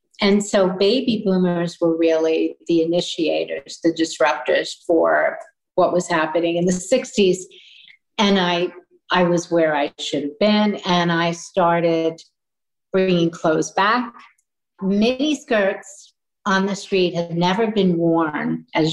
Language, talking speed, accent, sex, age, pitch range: English, 135 wpm, American, female, 50-69, 170-215 Hz